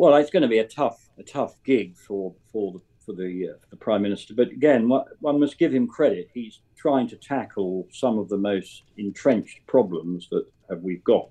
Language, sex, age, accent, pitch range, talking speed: English, male, 50-69, British, 95-115 Hz, 210 wpm